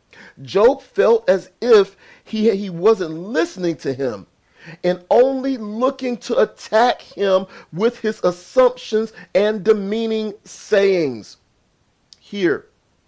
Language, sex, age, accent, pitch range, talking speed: English, male, 40-59, American, 180-255 Hz, 105 wpm